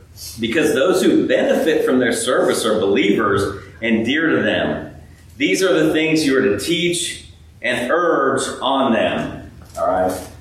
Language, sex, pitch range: English, male, 135-225 Hz